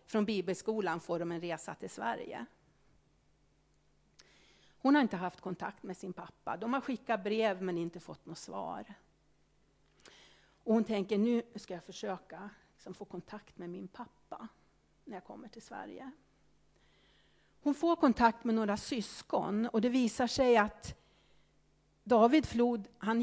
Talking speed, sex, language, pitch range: 140 wpm, female, Swedish, 180-230 Hz